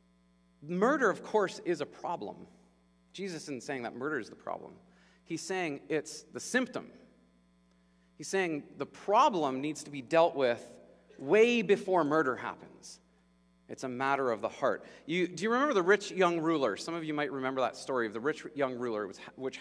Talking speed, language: 180 wpm, English